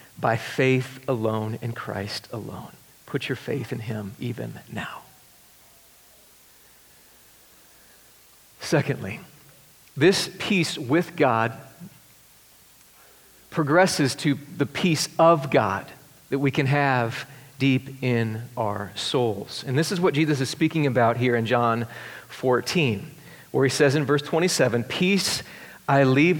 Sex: male